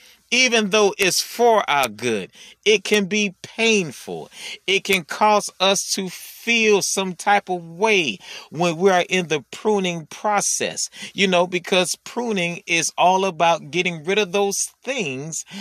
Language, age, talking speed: English, 30-49, 150 wpm